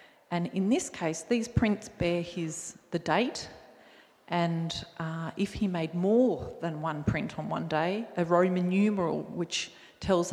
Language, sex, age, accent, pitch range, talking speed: English, female, 40-59, Australian, 165-205 Hz, 155 wpm